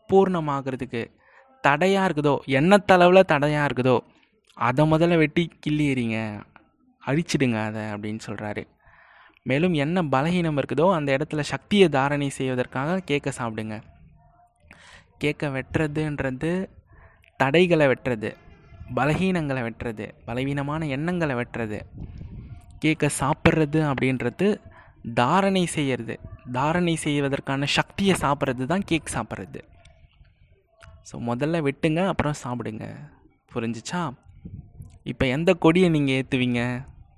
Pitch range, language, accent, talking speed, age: 125-170 Hz, Tamil, native, 90 wpm, 20-39